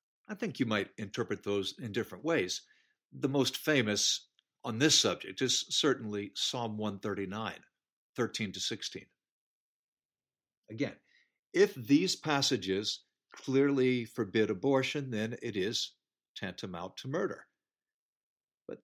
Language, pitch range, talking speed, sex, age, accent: English, 105-135 Hz, 115 wpm, male, 60-79, American